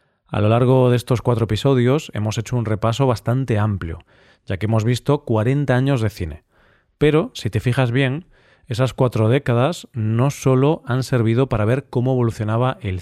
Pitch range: 110-135 Hz